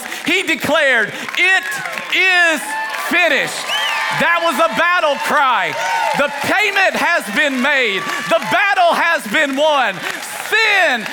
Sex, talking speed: male, 115 wpm